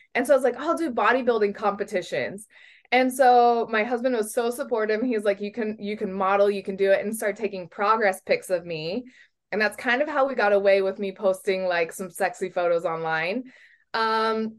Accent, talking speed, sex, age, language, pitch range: American, 215 wpm, female, 20-39, English, 195-245 Hz